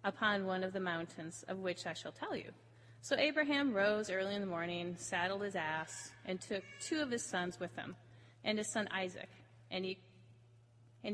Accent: American